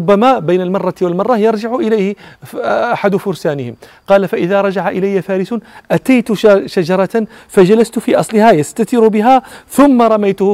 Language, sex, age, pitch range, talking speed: Arabic, male, 40-59, 150-195 Hz, 125 wpm